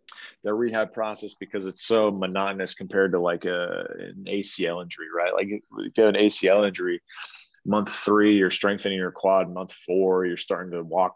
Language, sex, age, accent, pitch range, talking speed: English, male, 20-39, American, 95-110 Hz, 185 wpm